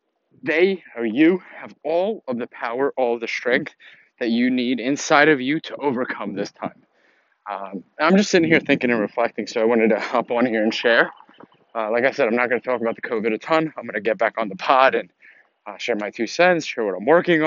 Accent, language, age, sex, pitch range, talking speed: American, English, 20-39, male, 115-145 Hz, 240 wpm